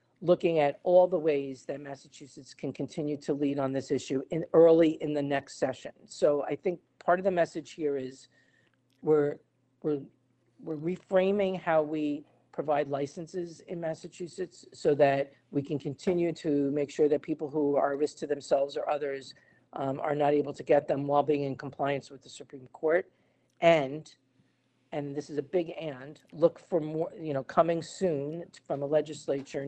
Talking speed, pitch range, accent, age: 180 wpm, 140-160 Hz, American, 50-69